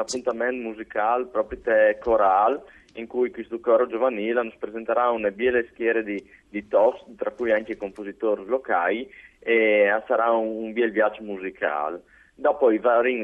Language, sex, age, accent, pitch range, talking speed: Italian, male, 30-49, native, 100-120 Hz, 155 wpm